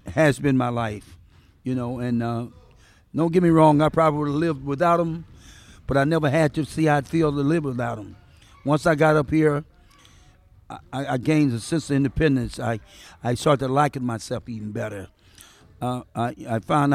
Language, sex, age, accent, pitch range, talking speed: English, male, 50-69, American, 115-155 Hz, 195 wpm